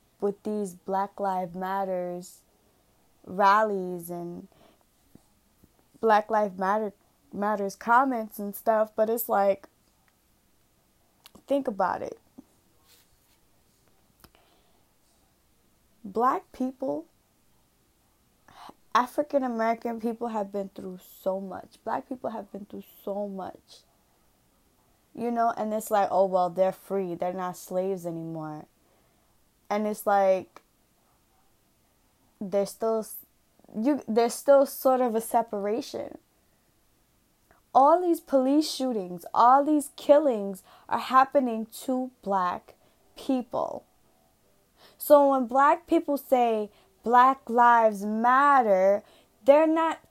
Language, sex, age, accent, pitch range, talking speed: English, female, 20-39, American, 200-275 Hz, 100 wpm